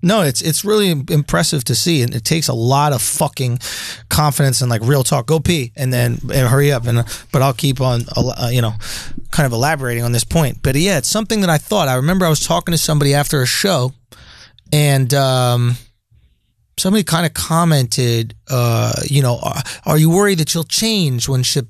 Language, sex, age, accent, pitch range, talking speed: English, male, 30-49, American, 120-160 Hz, 205 wpm